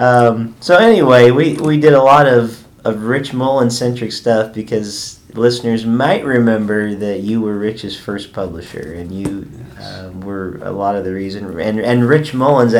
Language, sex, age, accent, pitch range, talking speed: English, male, 40-59, American, 100-120 Hz, 170 wpm